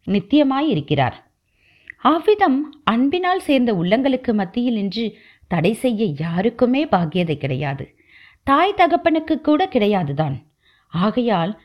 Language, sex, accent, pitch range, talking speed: Tamil, female, native, 180-280 Hz, 90 wpm